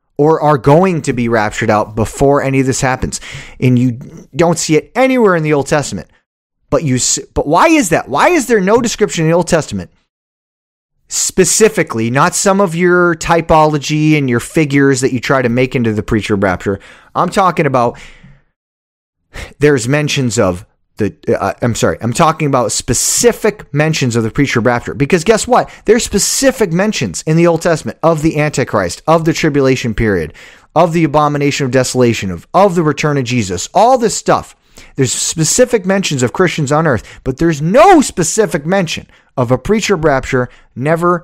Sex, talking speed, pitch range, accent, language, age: male, 180 wpm, 120-170 Hz, American, English, 30-49